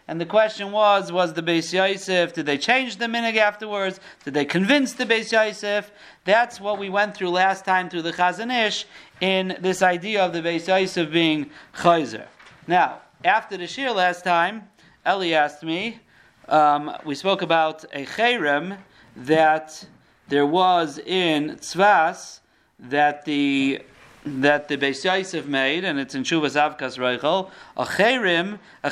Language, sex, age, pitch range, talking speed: English, male, 40-59, 165-220 Hz, 155 wpm